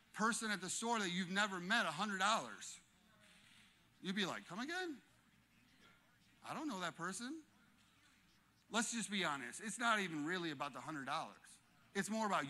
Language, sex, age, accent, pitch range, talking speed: English, male, 30-49, American, 170-215 Hz, 175 wpm